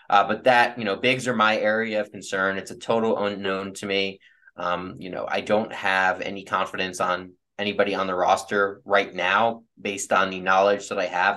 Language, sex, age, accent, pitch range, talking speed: English, male, 20-39, American, 100-115 Hz, 205 wpm